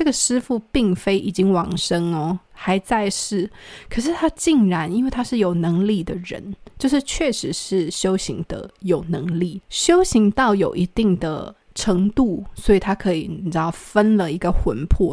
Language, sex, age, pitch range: Chinese, female, 20-39, 175-220 Hz